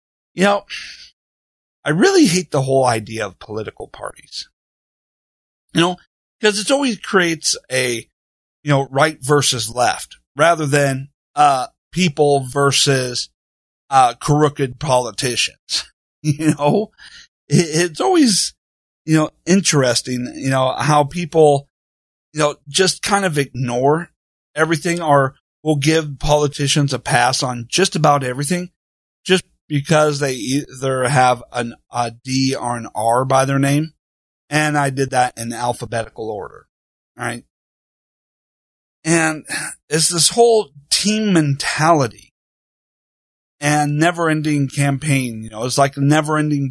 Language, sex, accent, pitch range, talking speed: English, male, American, 125-160 Hz, 120 wpm